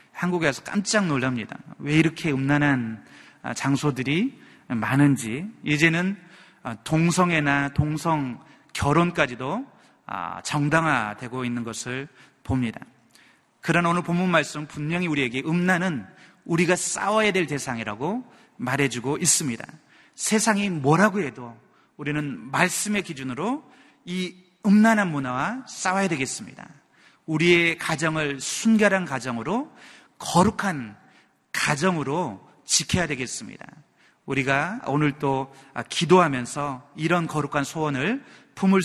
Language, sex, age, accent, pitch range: Korean, male, 30-49, native, 135-180 Hz